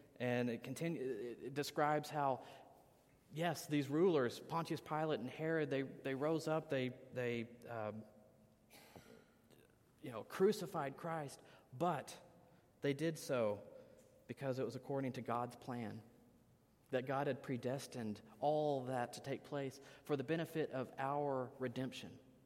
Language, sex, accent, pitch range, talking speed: English, male, American, 115-145 Hz, 135 wpm